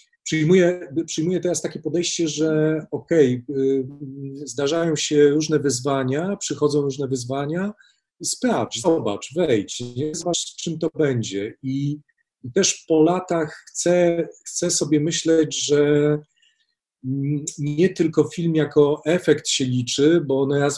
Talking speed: 125 wpm